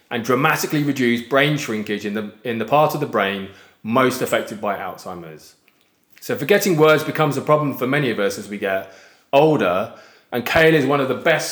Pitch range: 110-150 Hz